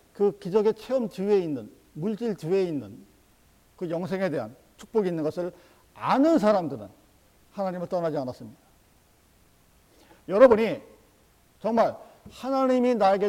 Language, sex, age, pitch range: Korean, male, 50-69, 140-210 Hz